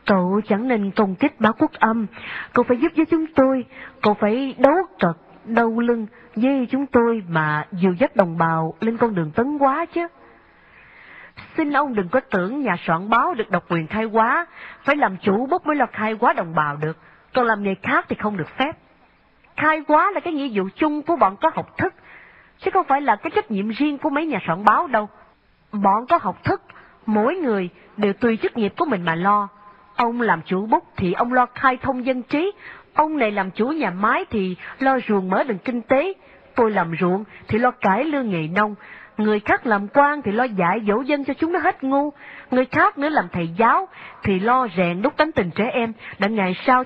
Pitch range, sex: 200-285 Hz, female